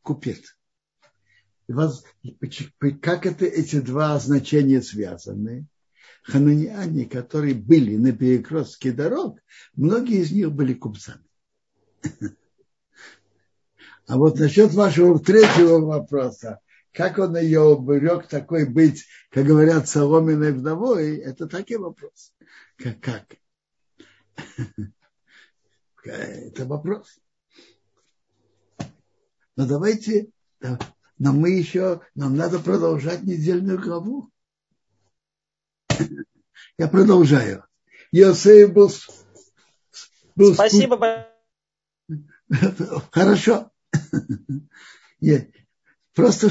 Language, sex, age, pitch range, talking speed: Russian, male, 60-79, 140-185 Hz, 75 wpm